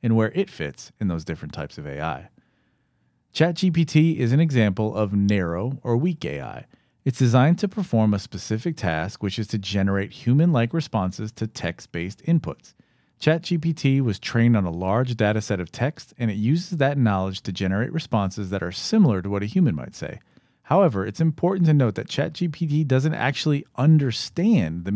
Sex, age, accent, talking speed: male, 40-59, American, 175 wpm